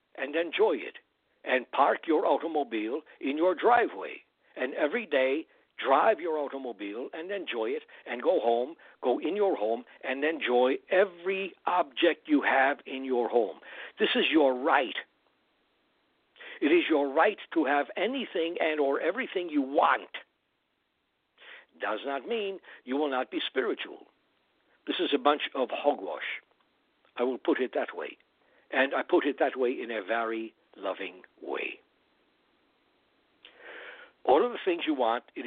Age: 60-79